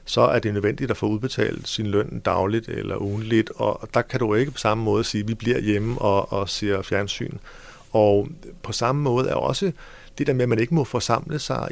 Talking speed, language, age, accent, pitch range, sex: 225 wpm, Danish, 50-69, native, 115-140 Hz, male